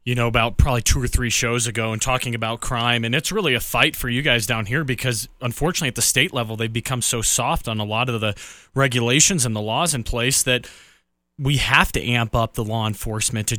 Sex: male